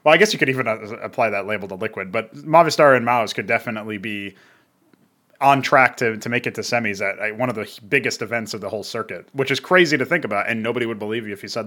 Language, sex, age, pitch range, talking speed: English, male, 20-39, 110-150 Hz, 255 wpm